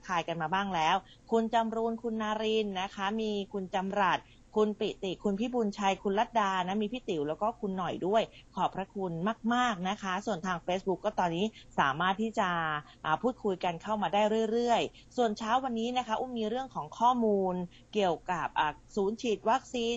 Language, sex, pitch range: Thai, female, 175-220 Hz